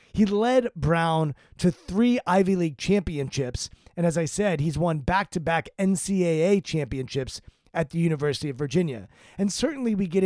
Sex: male